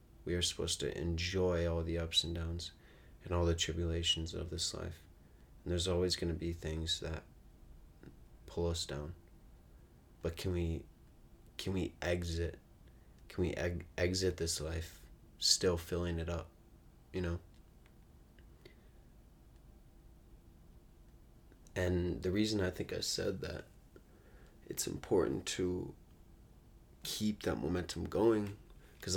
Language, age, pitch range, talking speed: English, 20-39, 85-90 Hz, 130 wpm